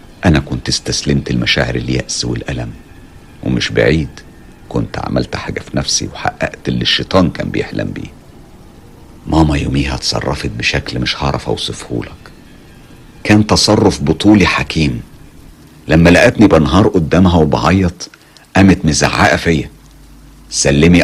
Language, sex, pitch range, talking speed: Arabic, male, 70-95 Hz, 110 wpm